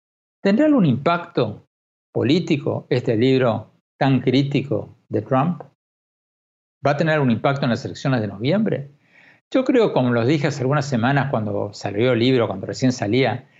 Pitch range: 120-160 Hz